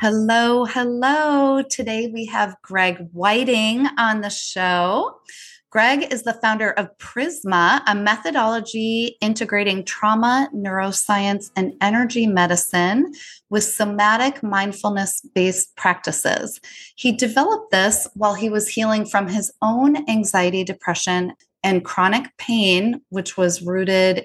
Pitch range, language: 190-235 Hz, English